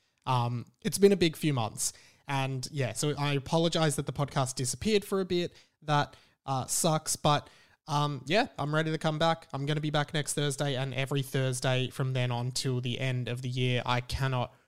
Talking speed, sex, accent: 210 wpm, male, Australian